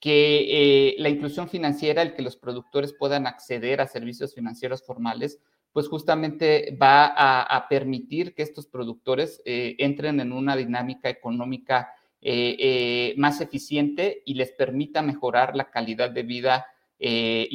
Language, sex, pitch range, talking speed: Spanish, male, 125-145 Hz, 145 wpm